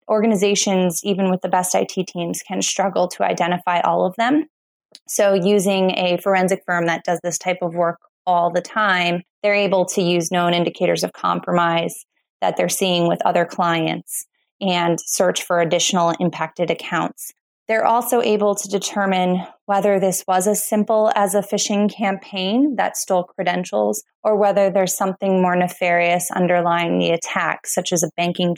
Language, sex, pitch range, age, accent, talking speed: English, female, 175-200 Hz, 20-39, American, 165 wpm